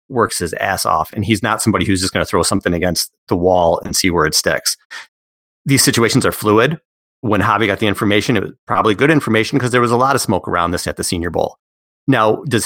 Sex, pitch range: male, 95-125 Hz